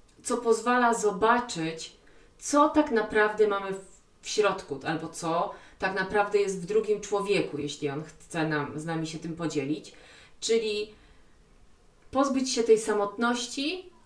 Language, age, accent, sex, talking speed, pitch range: Polish, 30-49, native, female, 130 wpm, 175-220 Hz